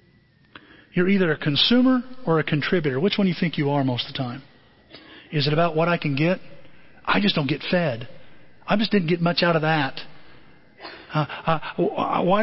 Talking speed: 200 wpm